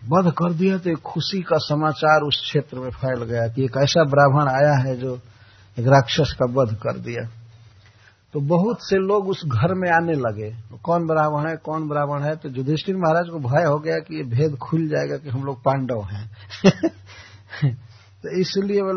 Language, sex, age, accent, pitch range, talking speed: Hindi, male, 60-79, native, 110-165 Hz, 190 wpm